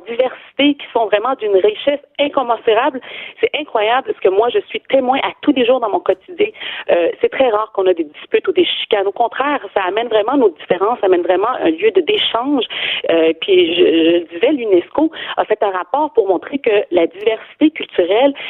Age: 40-59